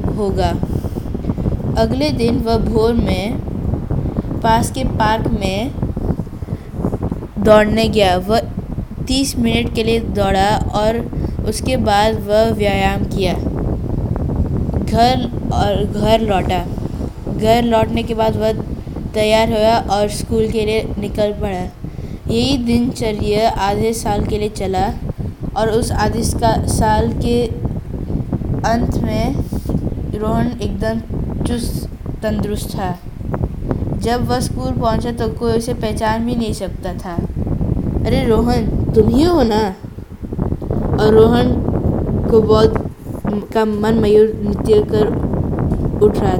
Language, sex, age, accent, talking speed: Hindi, female, 20-39, native, 115 wpm